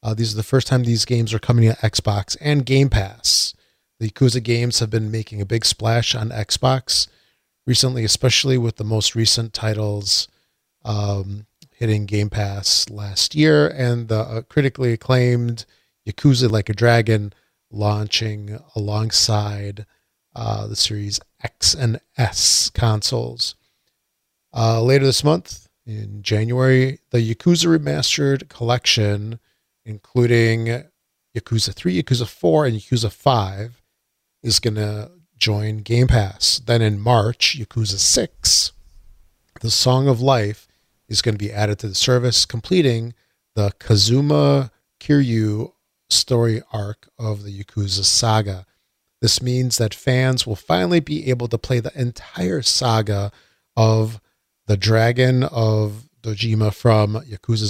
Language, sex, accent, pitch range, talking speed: English, male, American, 105-125 Hz, 135 wpm